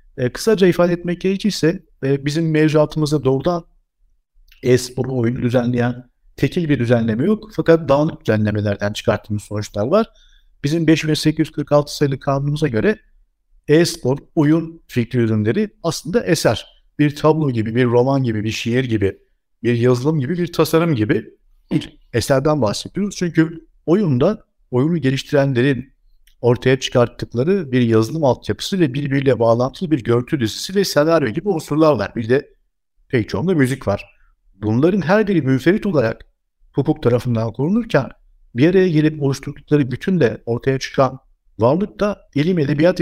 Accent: native